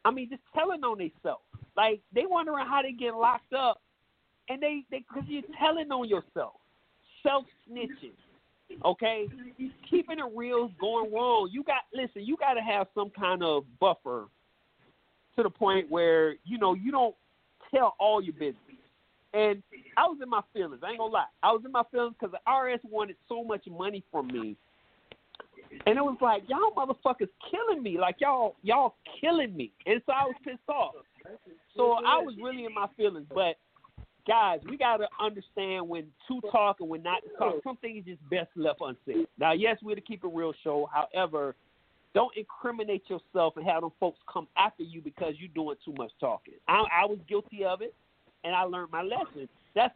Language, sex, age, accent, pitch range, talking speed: English, male, 40-59, American, 185-275 Hz, 190 wpm